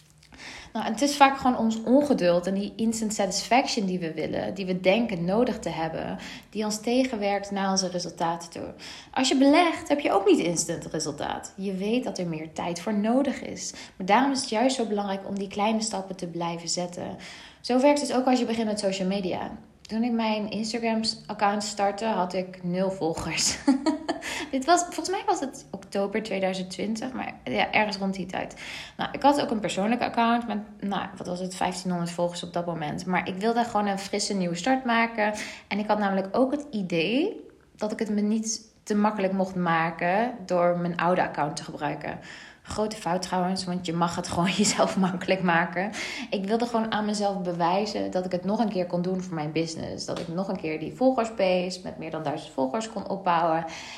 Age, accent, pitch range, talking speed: 20-39, Dutch, 175-230 Hz, 205 wpm